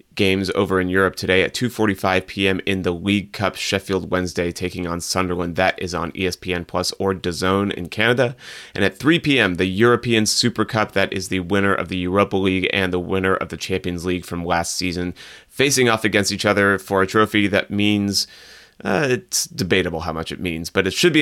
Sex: male